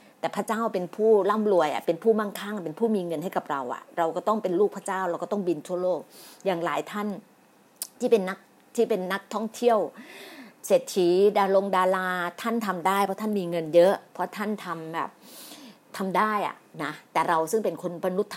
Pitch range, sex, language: 175-220 Hz, female, Thai